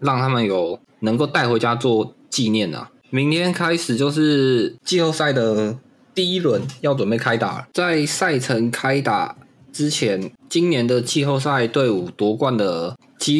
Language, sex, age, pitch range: Chinese, male, 20-39, 115-140 Hz